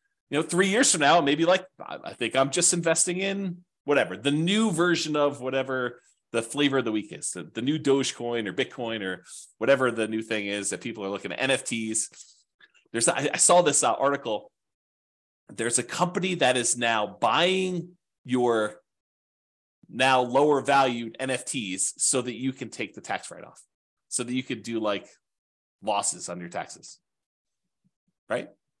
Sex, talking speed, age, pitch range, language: male, 160 wpm, 30-49, 120-170 Hz, English